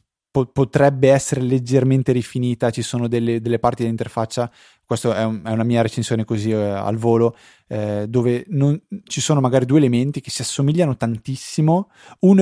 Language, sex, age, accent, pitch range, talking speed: Italian, male, 20-39, native, 105-130 Hz, 165 wpm